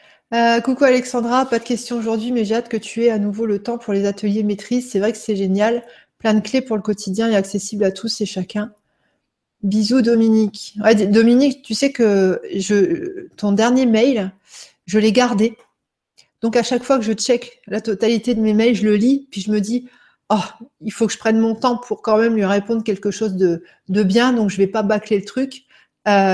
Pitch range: 205-245 Hz